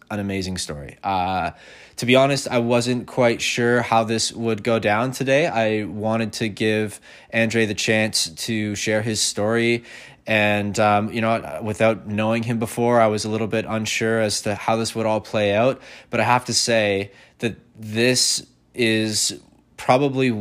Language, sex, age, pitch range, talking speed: English, male, 20-39, 100-120 Hz, 175 wpm